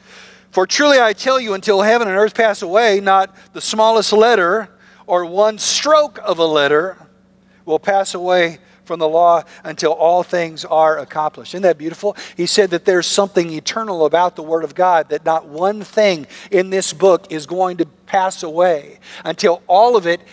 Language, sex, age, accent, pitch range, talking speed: English, male, 50-69, American, 180-230 Hz, 185 wpm